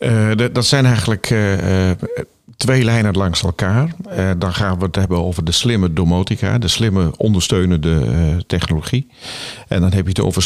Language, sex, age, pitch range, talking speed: Dutch, male, 50-69, 90-110 Hz, 180 wpm